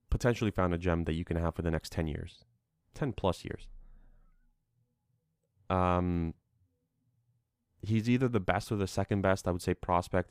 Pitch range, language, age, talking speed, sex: 90-105 Hz, English, 20-39, 170 wpm, male